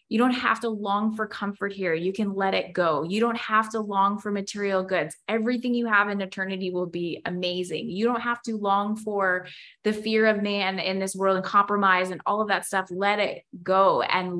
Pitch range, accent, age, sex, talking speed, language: 185-230 Hz, American, 20-39, female, 220 wpm, English